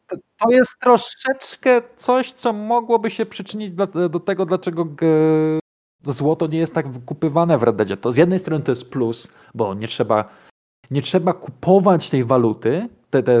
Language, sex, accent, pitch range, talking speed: Polish, male, native, 125-175 Hz, 160 wpm